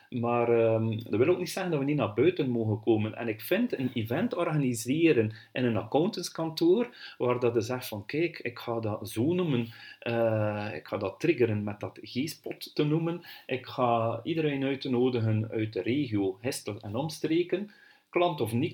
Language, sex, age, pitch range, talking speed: Dutch, male, 40-59, 115-155 Hz, 185 wpm